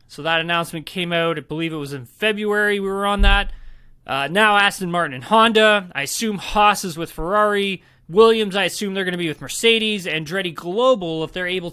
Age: 20-39